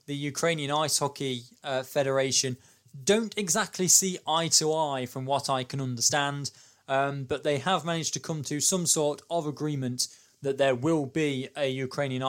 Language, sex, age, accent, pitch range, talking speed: English, male, 20-39, British, 130-160 Hz, 170 wpm